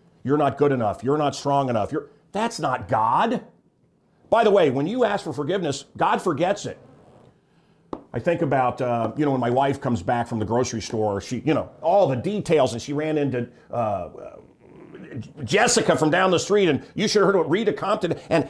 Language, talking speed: English, 205 wpm